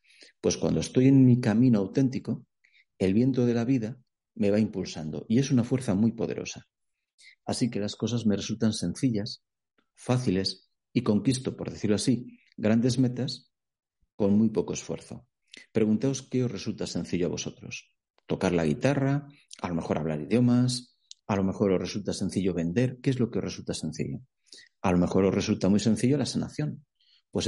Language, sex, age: Spanish, male, 40-59